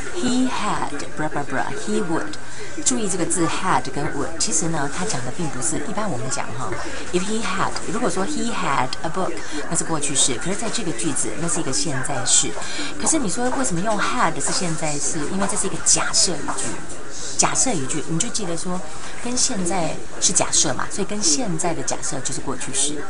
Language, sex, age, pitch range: Chinese, female, 30-49, 150-195 Hz